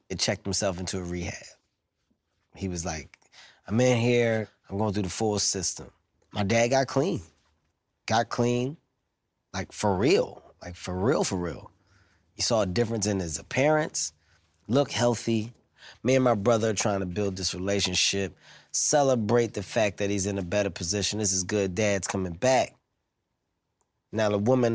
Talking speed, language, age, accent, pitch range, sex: 165 wpm, English, 20-39, American, 95-120 Hz, male